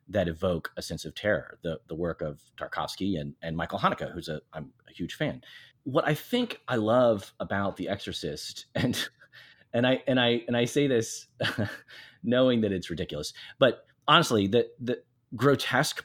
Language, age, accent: English, 30-49, American